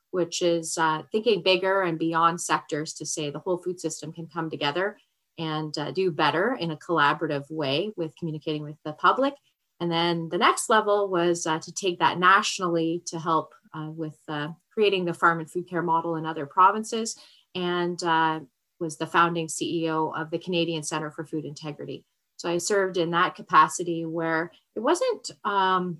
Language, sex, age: English, female, 30-49